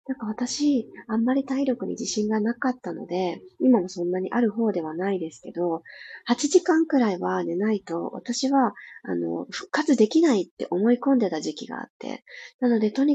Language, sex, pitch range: Japanese, female, 185-265 Hz